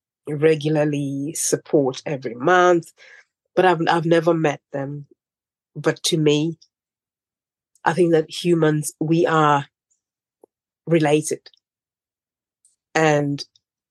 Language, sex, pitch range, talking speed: English, female, 145-175 Hz, 90 wpm